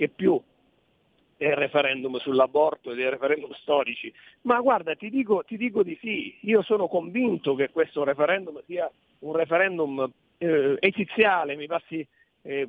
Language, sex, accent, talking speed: Italian, male, native, 140 wpm